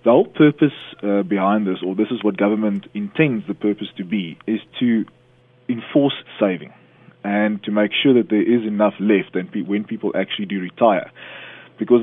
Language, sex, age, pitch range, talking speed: English, male, 20-39, 100-120 Hz, 175 wpm